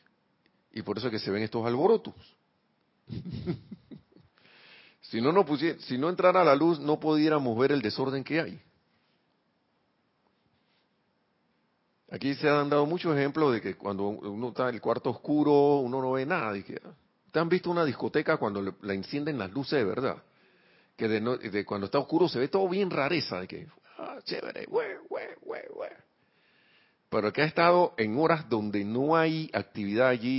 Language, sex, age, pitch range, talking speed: Spanish, male, 50-69, 105-155 Hz, 175 wpm